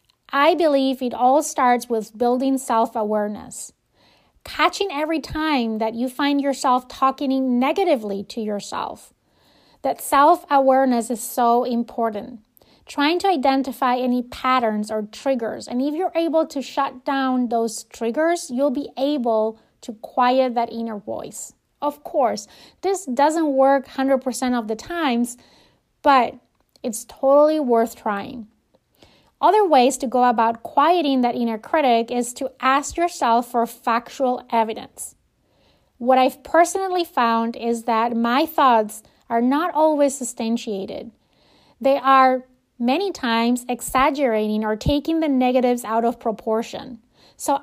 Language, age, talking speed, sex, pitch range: English, 30-49, 130 wpm, female, 230-285 Hz